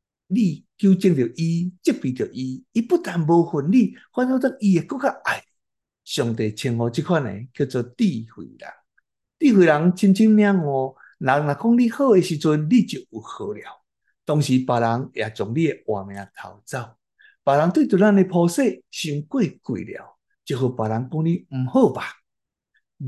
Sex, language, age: male, Chinese, 60-79